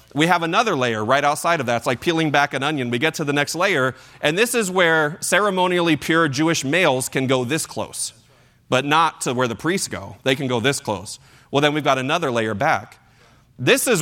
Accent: American